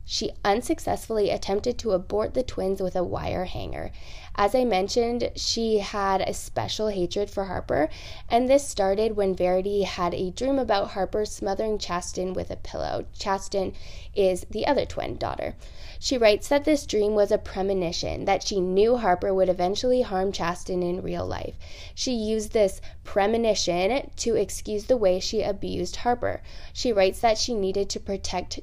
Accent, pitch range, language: American, 180-220 Hz, English